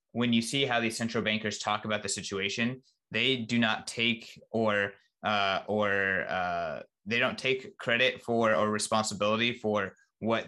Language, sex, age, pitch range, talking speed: English, male, 20-39, 105-120 Hz, 160 wpm